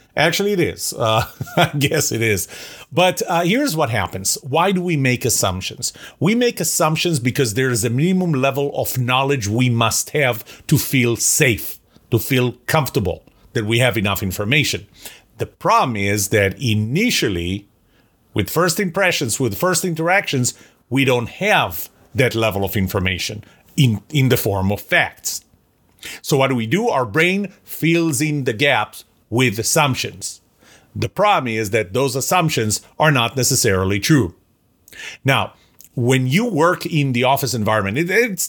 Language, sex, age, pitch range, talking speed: English, male, 40-59, 115-160 Hz, 155 wpm